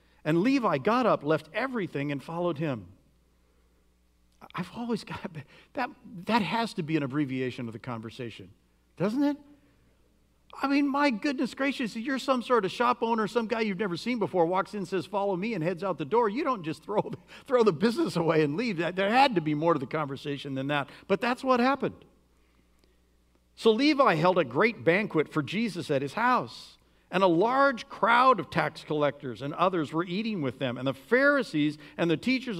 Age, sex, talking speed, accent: 50-69, male, 195 wpm, American